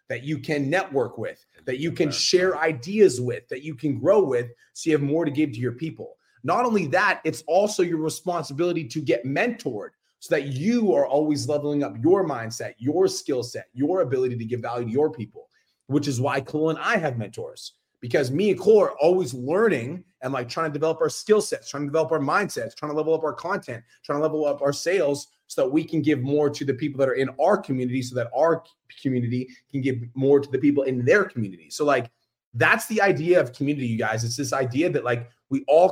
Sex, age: male, 30-49